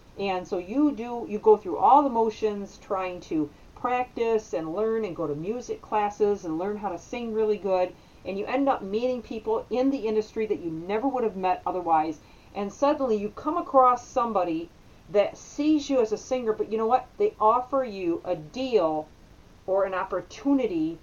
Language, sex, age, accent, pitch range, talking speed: English, female, 40-59, American, 185-235 Hz, 190 wpm